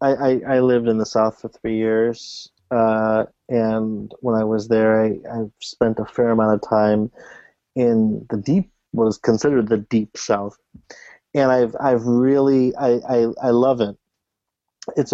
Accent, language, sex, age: American, English, male, 30-49